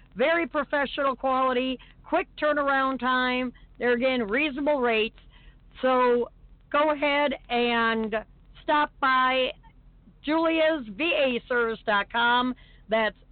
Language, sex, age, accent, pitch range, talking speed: English, female, 50-69, American, 240-295 Hz, 85 wpm